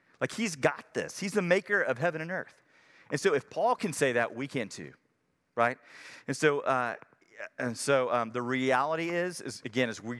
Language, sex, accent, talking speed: English, male, American, 205 wpm